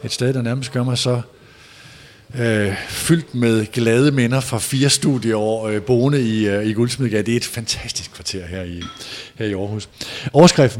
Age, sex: 50-69, male